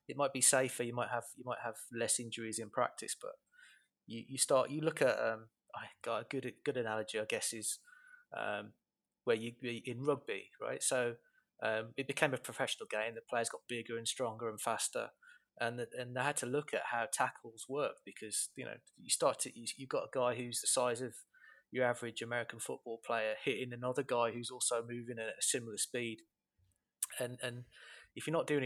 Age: 20-39